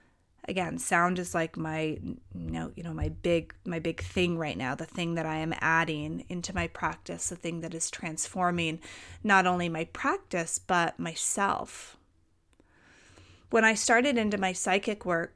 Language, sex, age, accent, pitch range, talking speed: English, female, 30-49, American, 165-210 Hz, 170 wpm